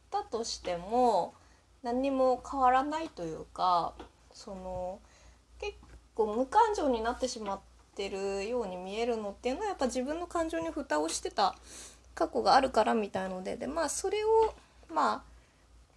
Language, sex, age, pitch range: Japanese, female, 20-39, 195-310 Hz